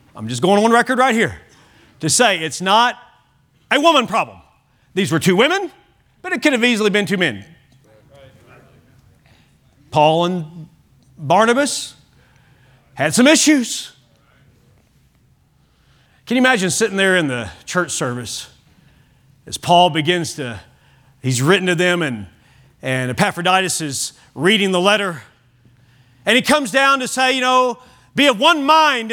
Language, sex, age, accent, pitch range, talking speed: English, male, 40-59, American, 160-255 Hz, 140 wpm